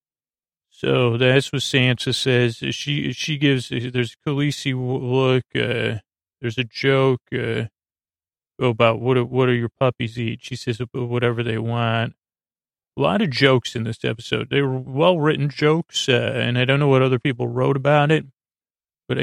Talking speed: 170 wpm